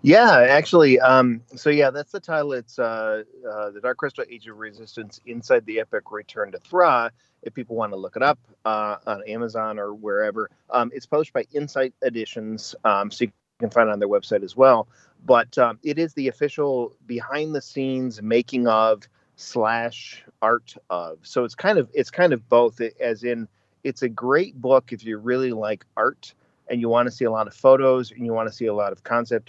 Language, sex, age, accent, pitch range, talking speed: English, male, 30-49, American, 110-130 Hz, 210 wpm